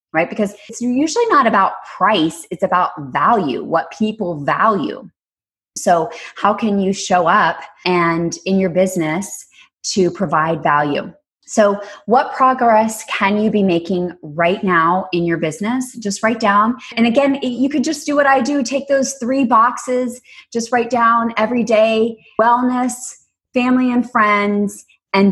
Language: English